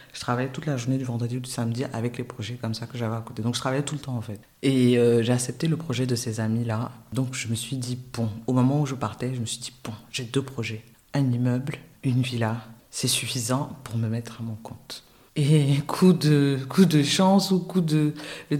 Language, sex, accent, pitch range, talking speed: French, female, French, 125-150 Hz, 250 wpm